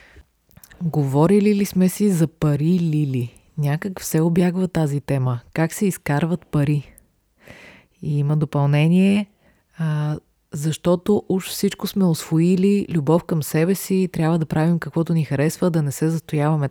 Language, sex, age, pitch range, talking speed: Bulgarian, female, 30-49, 140-175 Hz, 145 wpm